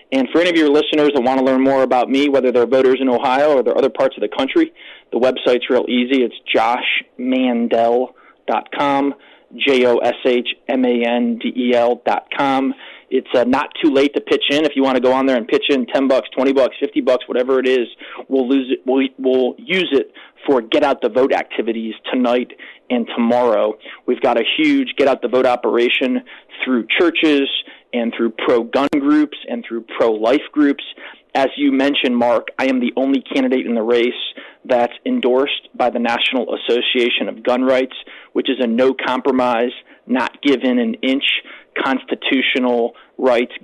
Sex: male